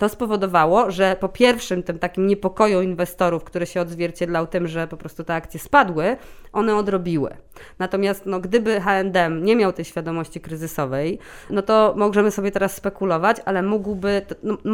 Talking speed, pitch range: 160 wpm, 170-205 Hz